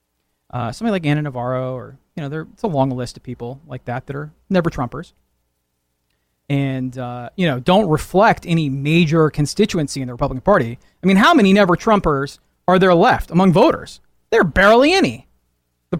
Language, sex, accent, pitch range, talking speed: English, male, American, 130-185 Hz, 185 wpm